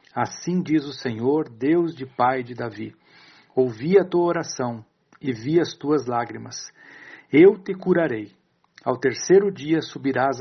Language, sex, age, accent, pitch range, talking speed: Portuguese, male, 60-79, Brazilian, 130-165 Hz, 145 wpm